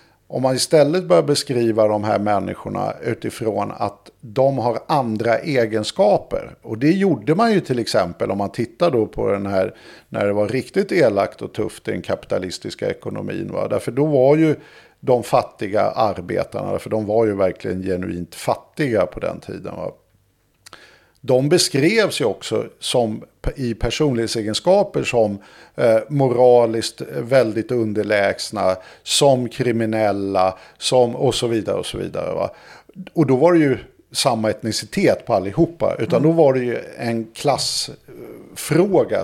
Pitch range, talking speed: 105-140 Hz, 145 wpm